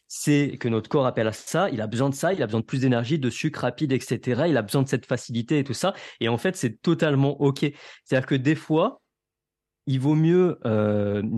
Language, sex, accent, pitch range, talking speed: French, male, French, 120-150 Hz, 235 wpm